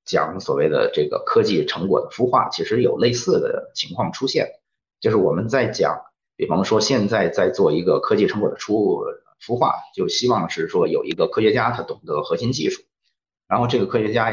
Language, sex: Chinese, male